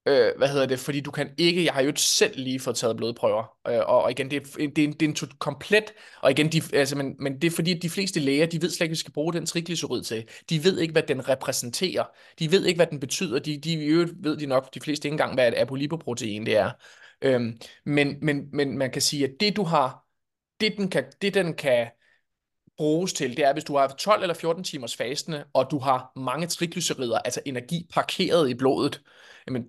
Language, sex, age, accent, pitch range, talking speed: Danish, male, 20-39, native, 135-170 Hz, 245 wpm